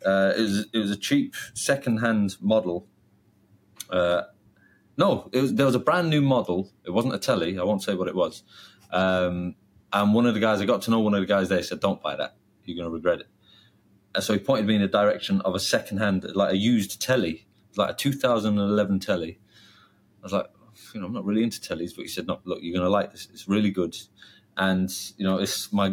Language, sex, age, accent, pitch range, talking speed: English, male, 30-49, British, 95-125 Hz, 240 wpm